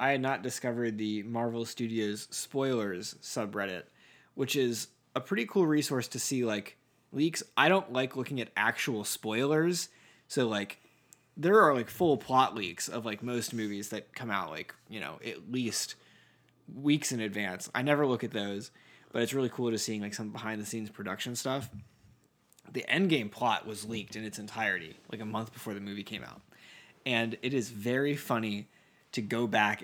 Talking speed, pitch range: 185 wpm, 110-135 Hz